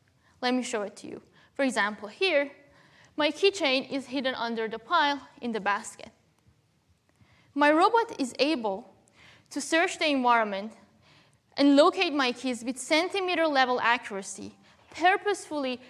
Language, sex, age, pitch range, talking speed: English, female, 20-39, 230-310 Hz, 135 wpm